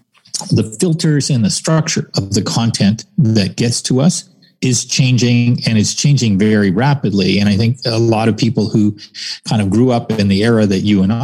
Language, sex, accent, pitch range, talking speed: English, male, American, 110-160 Hz, 200 wpm